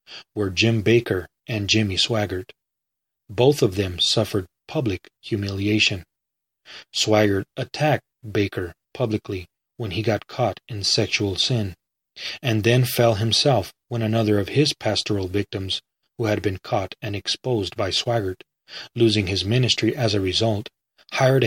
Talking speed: 135 wpm